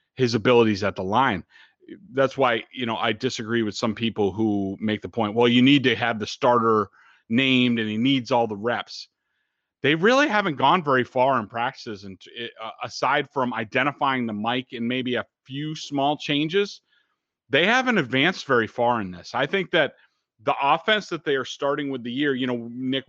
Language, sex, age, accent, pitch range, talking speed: English, male, 30-49, American, 110-135 Hz, 190 wpm